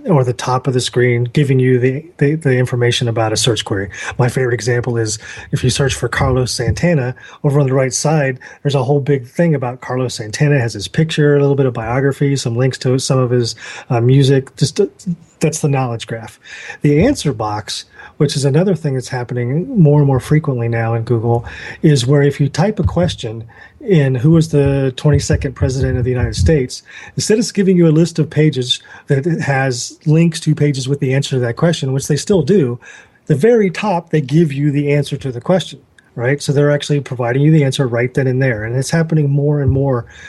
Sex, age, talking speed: male, 30-49, 220 wpm